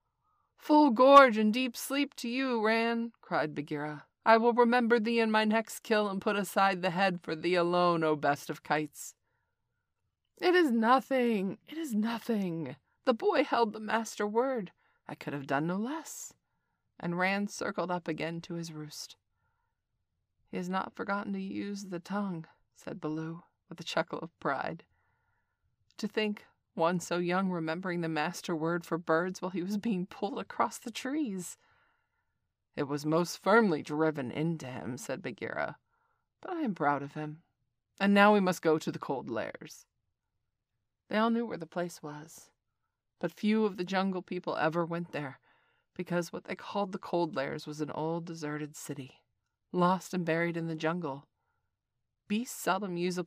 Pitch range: 155-215 Hz